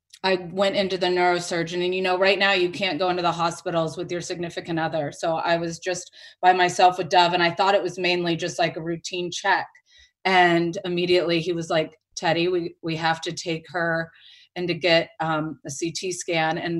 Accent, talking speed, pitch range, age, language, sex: American, 210 wpm, 170-200 Hz, 30-49, English, female